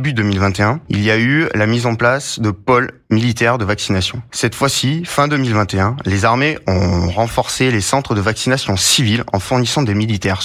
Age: 20-39